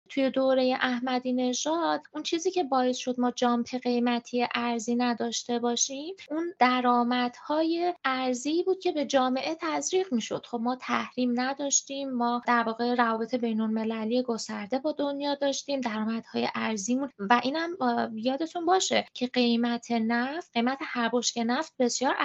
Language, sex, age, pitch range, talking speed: Persian, female, 20-39, 240-295 Hz, 140 wpm